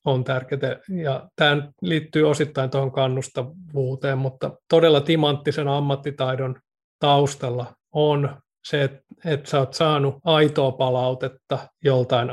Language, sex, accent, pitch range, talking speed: Finnish, male, native, 130-155 Hz, 110 wpm